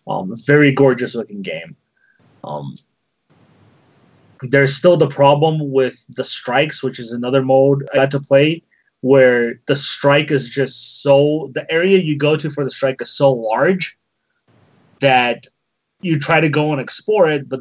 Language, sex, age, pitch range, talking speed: English, male, 30-49, 125-150 Hz, 160 wpm